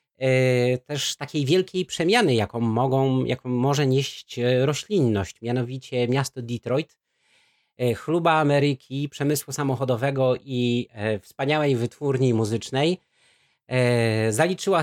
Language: Polish